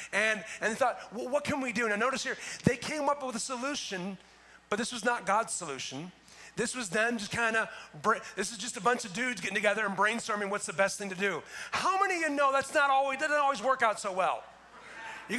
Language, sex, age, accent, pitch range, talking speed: English, male, 30-49, American, 205-270 Hz, 245 wpm